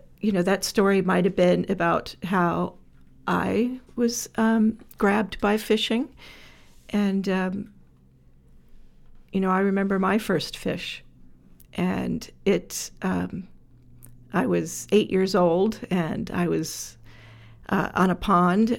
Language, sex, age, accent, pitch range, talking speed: English, female, 50-69, American, 180-215 Hz, 125 wpm